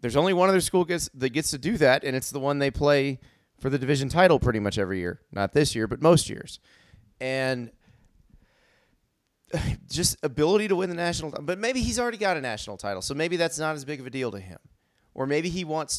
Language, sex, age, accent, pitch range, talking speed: English, male, 30-49, American, 110-150 Hz, 230 wpm